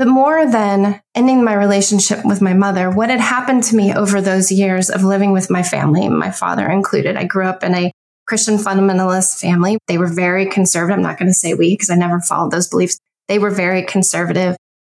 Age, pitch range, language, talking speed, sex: 20-39, 185-210 Hz, English, 215 wpm, female